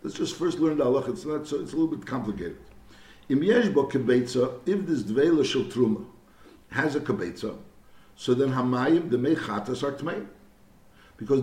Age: 60-79